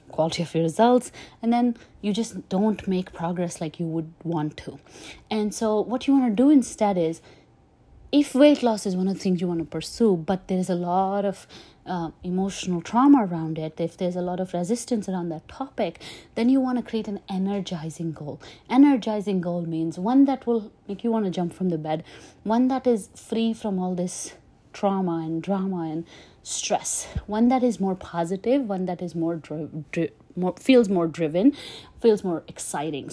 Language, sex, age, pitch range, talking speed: English, female, 30-49, 170-220 Hz, 195 wpm